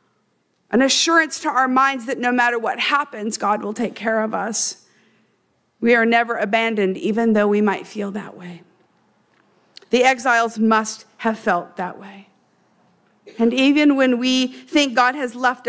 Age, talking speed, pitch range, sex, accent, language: 50-69, 160 wpm, 220-290 Hz, female, American, English